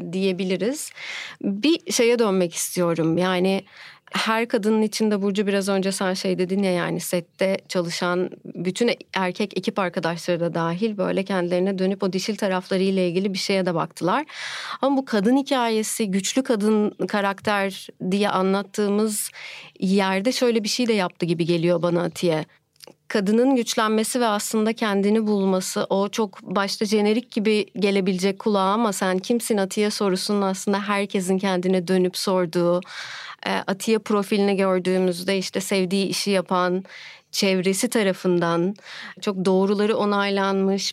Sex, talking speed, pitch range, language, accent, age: female, 130 wpm, 185-220 Hz, Turkish, native, 40-59